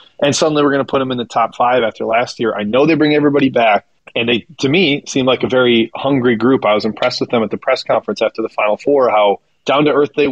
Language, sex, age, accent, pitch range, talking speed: English, male, 30-49, American, 115-145 Hz, 270 wpm